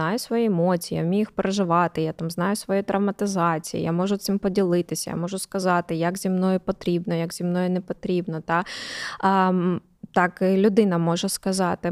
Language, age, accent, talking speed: Ukrainian, 20-39, native, 170 wpm